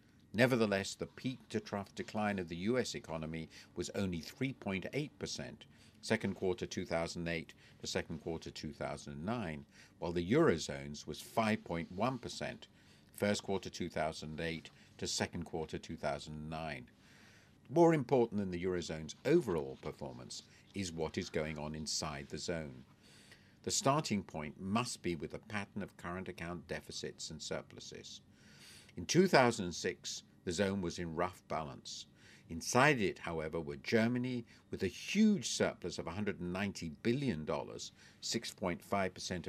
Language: English